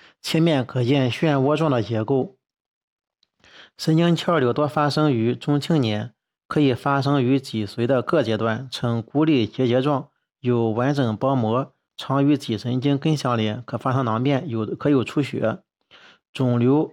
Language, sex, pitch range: Chinese, male, 120-145 Hz